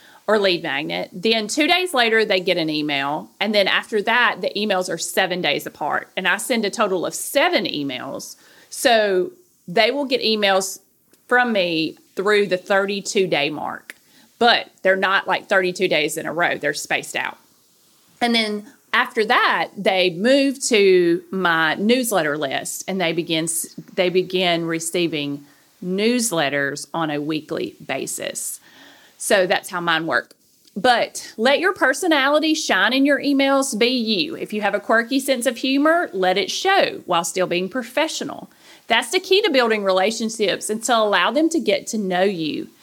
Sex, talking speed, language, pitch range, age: female, 165 wpm, English, 180-250 Hz, 40-59